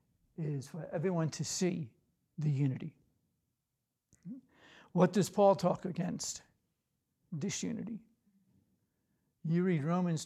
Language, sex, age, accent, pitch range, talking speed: English, male, 60-79, American, 155-190 Hz, 95 wpm